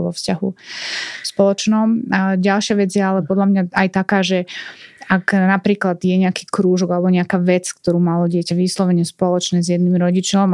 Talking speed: 165 wpm